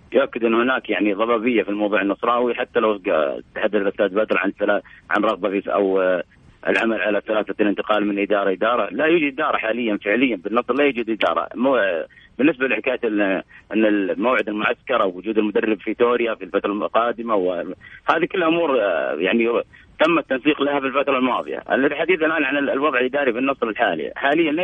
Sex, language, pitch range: male, Arabic, 105-130 Hz